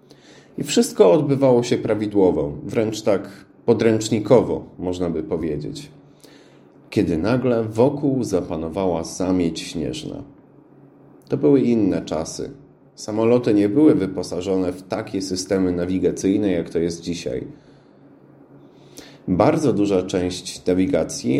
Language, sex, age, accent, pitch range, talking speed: Polish, male, 30-49, native, 90-130 Hz, 105 wpm